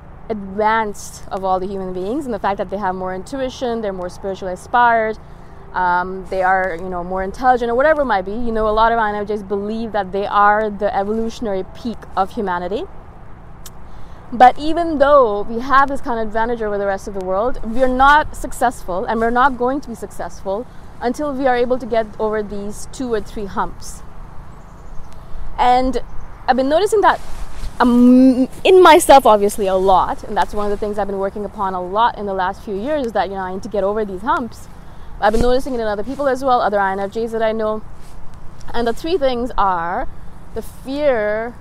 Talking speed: 205 wpm